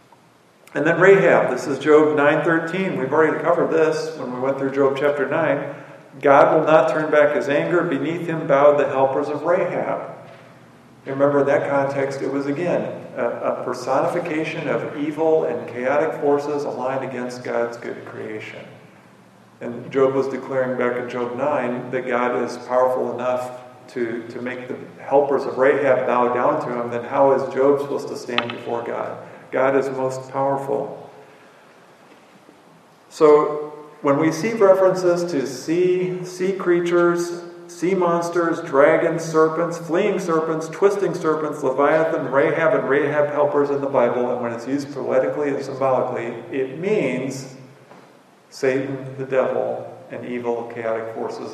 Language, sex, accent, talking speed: English, male, American, 150 wpm